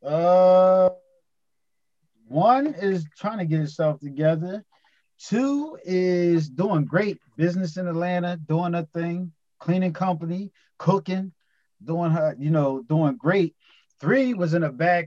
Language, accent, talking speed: English, American, 125 wpm